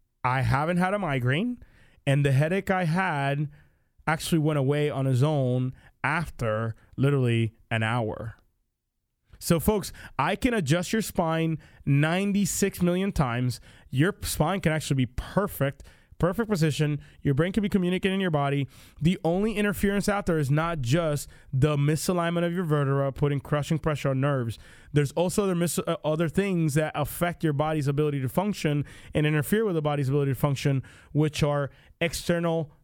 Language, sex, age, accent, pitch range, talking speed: English, male, 20-39, American, 140-170 Hz, 160 wpm